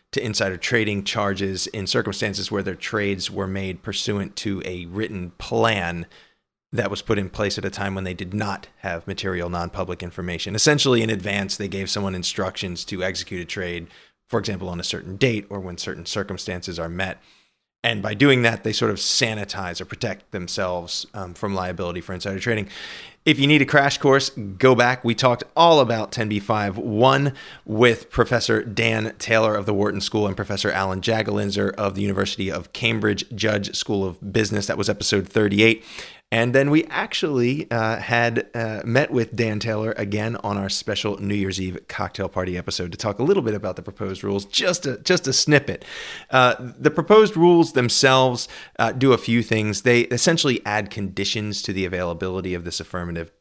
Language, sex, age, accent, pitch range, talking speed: English, male, 30-49, American, 95-115 Hz, 185 wpm